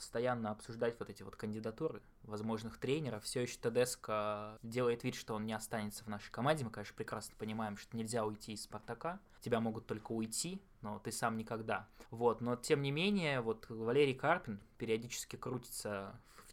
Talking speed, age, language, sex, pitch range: 175 wpm, 20-39, Russian, male, 115-130 Hz